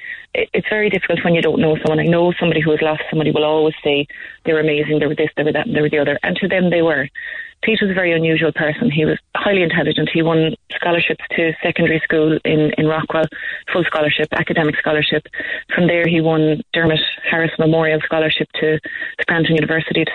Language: English